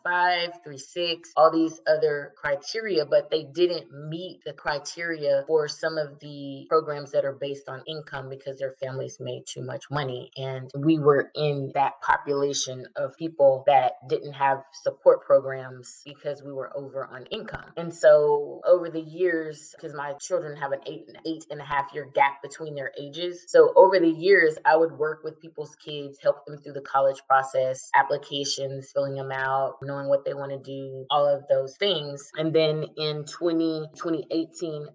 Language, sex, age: English, female, 20-39